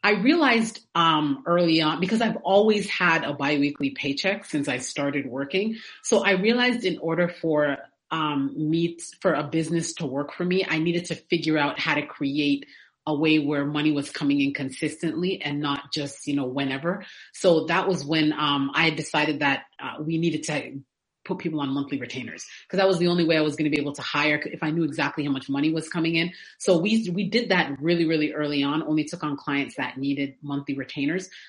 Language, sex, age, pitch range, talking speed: English, female, 30-49, 145-180 Hz, 210 wpm